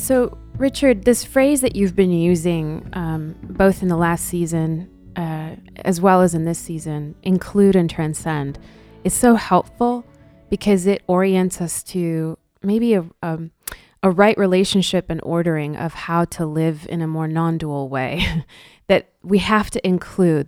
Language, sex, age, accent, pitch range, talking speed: English, female, 20-39, American, 160-190 Hz, 155 wpm